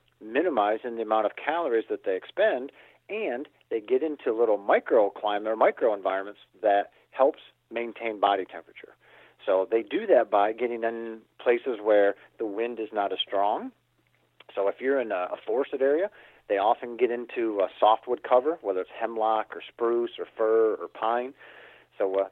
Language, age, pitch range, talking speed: English, 40-59, 110-175 Hz, 165 wpm